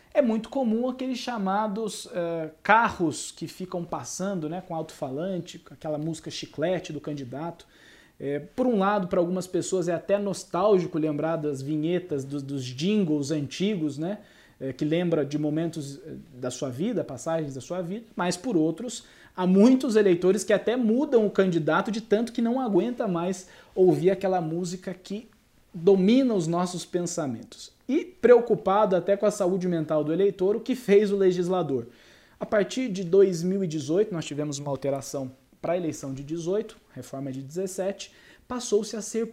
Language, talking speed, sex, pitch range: Portuguese, 155 wpm, male, 155-210 Hz